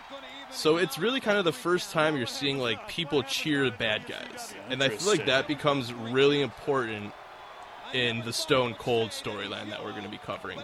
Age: 20-39